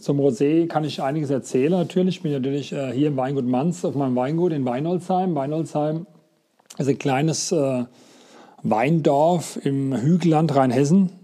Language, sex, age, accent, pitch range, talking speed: German, male, 40-59, German, 135-165 Hz, 145 wpm